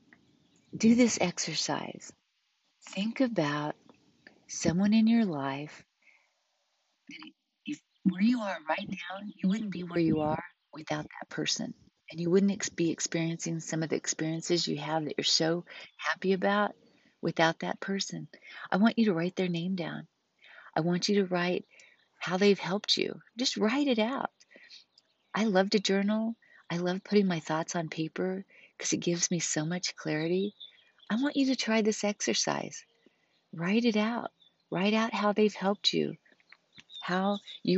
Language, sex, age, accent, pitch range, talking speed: English, female, 40-59, American, 170-210 Hz, 160 wpm